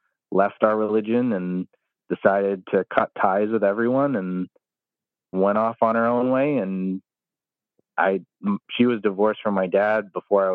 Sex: male